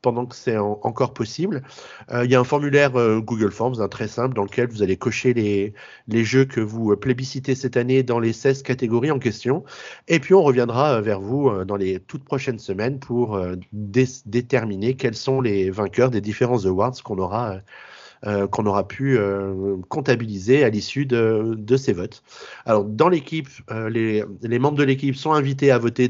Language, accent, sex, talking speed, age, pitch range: French, French, male, 205 wpm, 30-49, 105-135 Hz